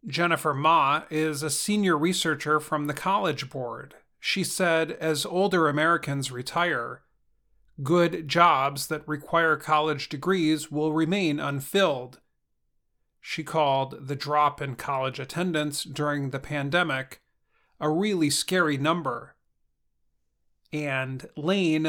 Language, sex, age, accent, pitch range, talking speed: English, male, 40-59, American, 140-165 Hz, 110 wpm